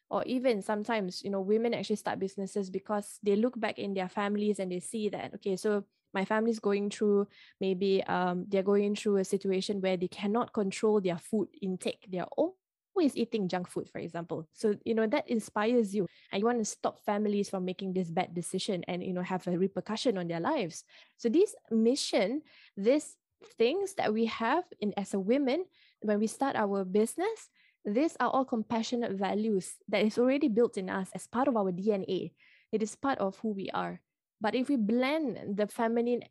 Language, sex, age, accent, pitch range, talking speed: English, female, 10-29, Malaysian, 190-235 Hz, 200 wpm